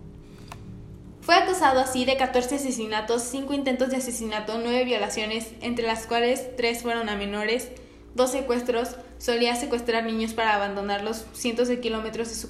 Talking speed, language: 150 wpm, Spanish